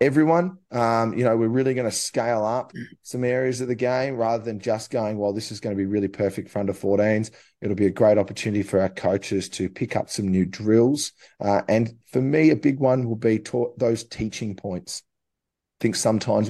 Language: English